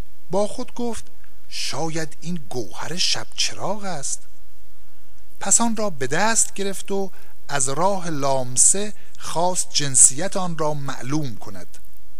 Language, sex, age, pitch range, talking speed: Persian, male, 60-79, 140-195 Hz, 125 wpm